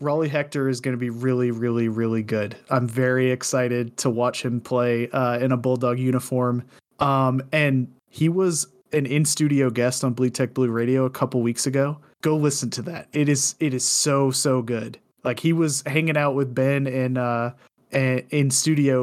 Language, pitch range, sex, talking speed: English, 130-155 Hz, male, 190 wpm